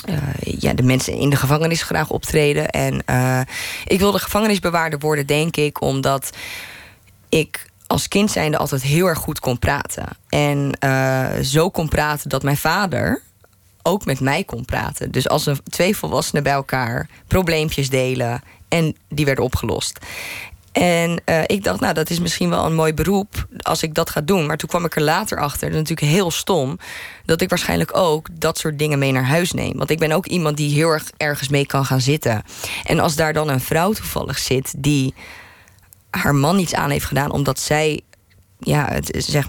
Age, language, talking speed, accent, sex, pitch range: 20-39, Dutch, 190 wpm, Dutch, female, 130-160 Hz